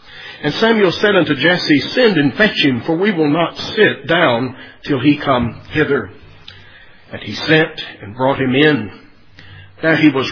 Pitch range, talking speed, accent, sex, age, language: 110-150 Hz, 170 wpm, American, male, 50-69, English